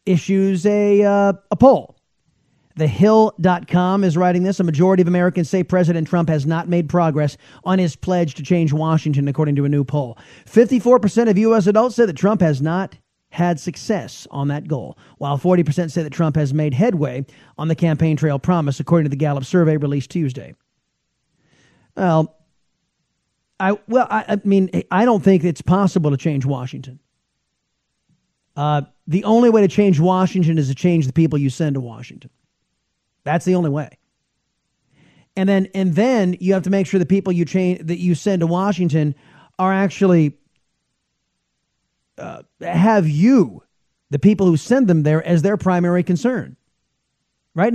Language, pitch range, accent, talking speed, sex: English, 155-195 Hz, American, 170 wpm, male